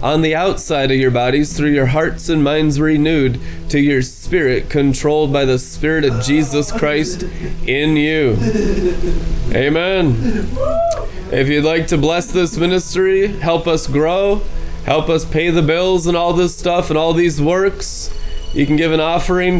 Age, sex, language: 20-39, male, English